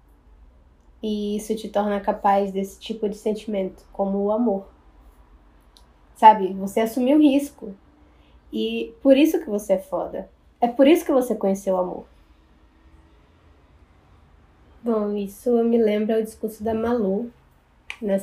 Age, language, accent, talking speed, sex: 10-29, Portuguese, Brazilian, 130 wpm, female